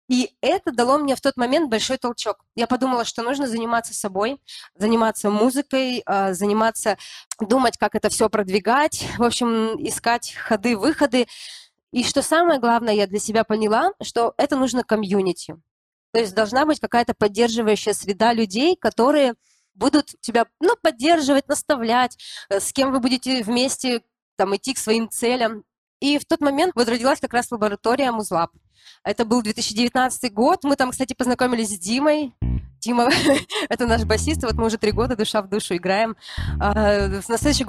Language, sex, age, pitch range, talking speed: Russian, female, 20-39, 215-255 Hz, 155 wpm